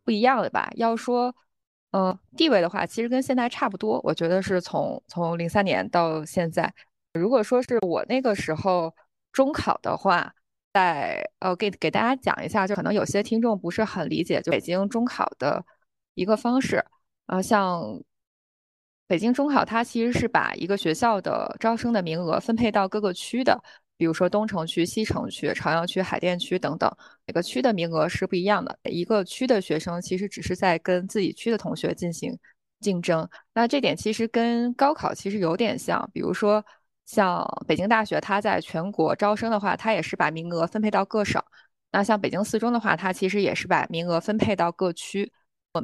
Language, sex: Chinese, female